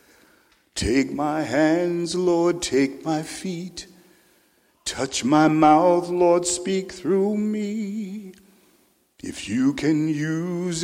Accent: American